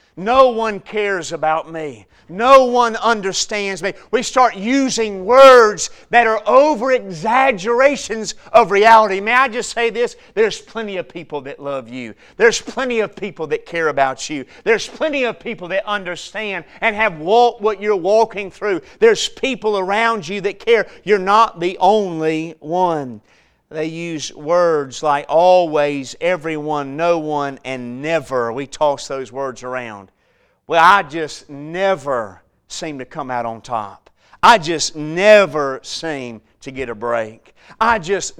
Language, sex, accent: English, male, American